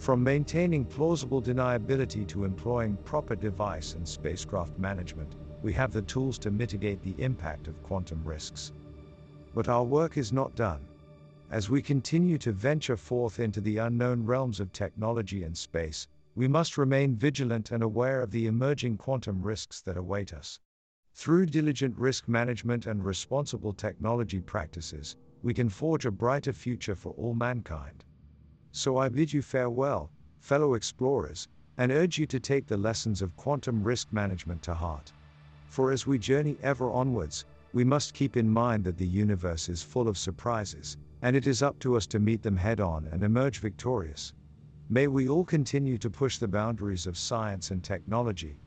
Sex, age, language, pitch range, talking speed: male, 50-69, English, 85-130 Hz, 170 wpm